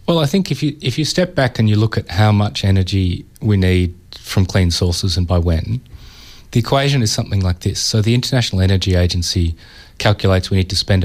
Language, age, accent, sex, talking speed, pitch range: English, 30-49, Australian, male, 215 wpm, 90-110 Hz